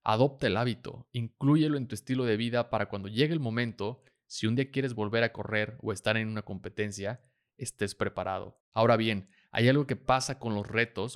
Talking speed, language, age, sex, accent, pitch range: 200 wpm, Spanish, 30-49, male, Mexican, 105-125 Hz